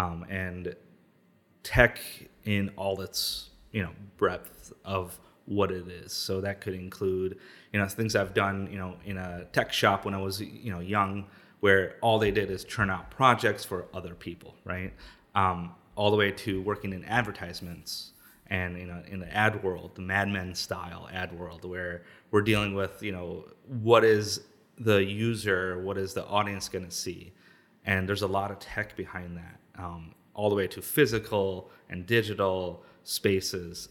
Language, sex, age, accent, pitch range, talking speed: English, male, 30-49, American, 90-105 Hz, 180 wpm